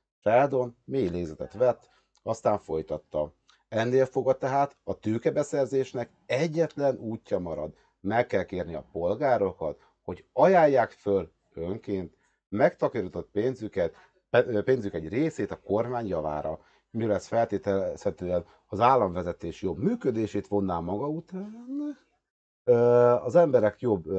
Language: Hungarian